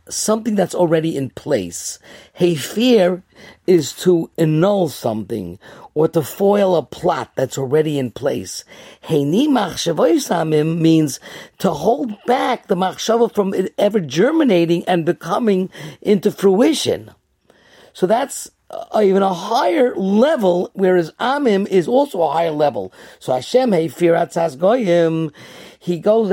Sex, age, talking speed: male, 50-69, 135 wpm